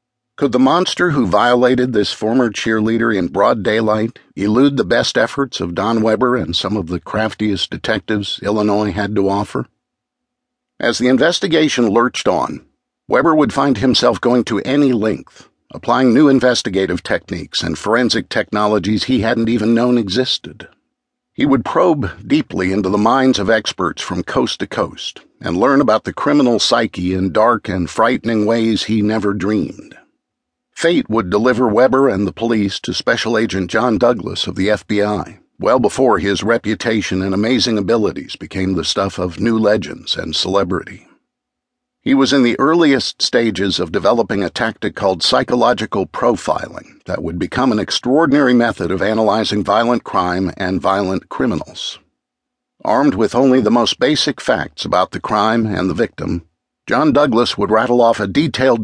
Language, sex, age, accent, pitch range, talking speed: English, male, 50-69, American, 100-125 Hz, 160 wpm